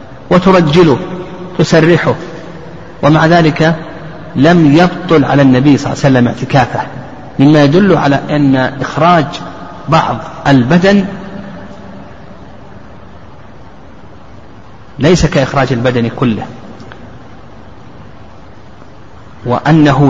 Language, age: Arabic, 40-59